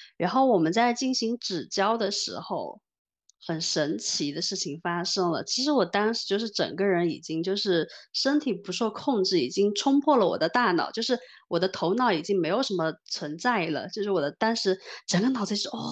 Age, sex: 20-39, female